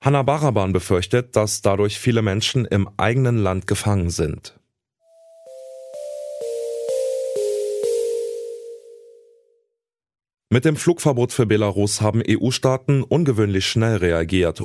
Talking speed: 90 wpm